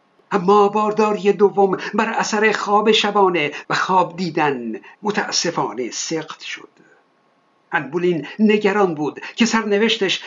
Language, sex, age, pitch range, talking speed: Persian, male, 60-79, 165-215 Hz, 105 wpm